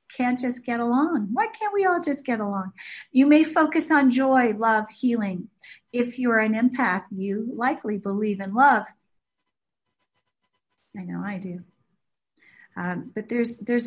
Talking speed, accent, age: 150 wpm, American, 40-59